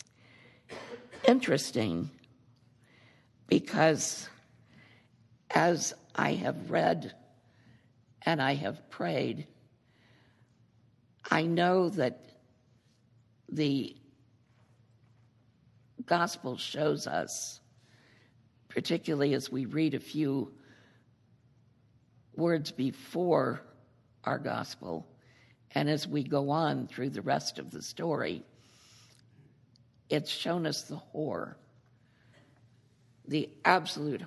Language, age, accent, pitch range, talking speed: English, 60-79, American, 120-140 Hz, 80 wpm